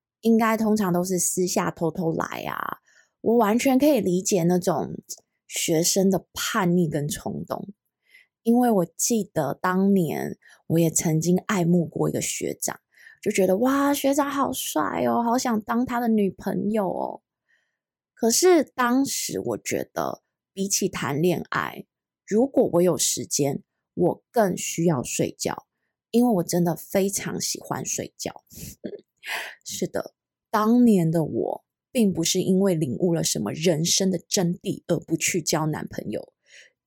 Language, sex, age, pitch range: Chinese, female, 20-39, 170-230 Hz